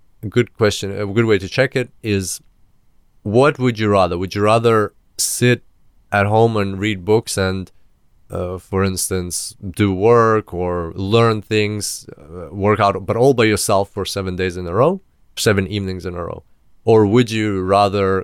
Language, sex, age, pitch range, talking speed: English, male, 30-49, 95-115 Hz, 175 wpm